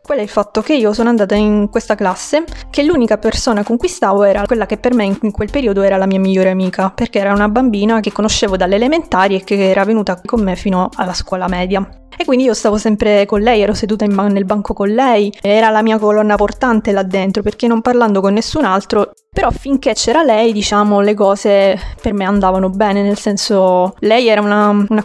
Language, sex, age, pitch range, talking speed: Italian, female, 20-39, 195-225 Hz, 215 wpm